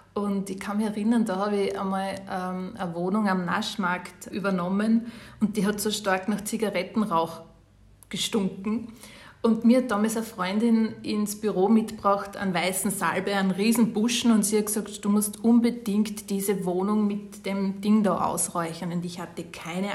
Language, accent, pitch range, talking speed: German, Austrian, 195-220 Hz, 170 wpm